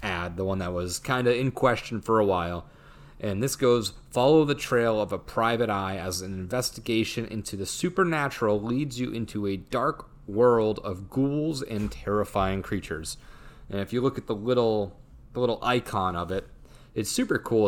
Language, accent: English, American